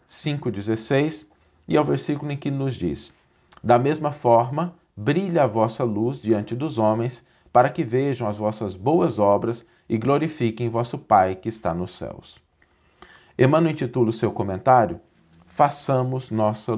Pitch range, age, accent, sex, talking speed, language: 105-140 Hz, 40-59, Brazilian, male, 145 wpm, Portuguese